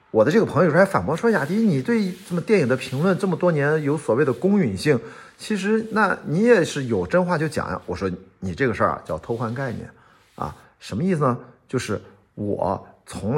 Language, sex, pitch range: Chinese, male, 105-155 Hz